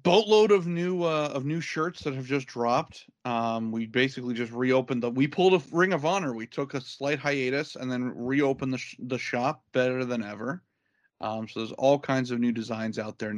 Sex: male